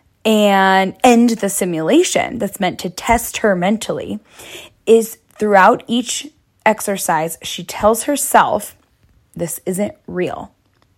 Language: English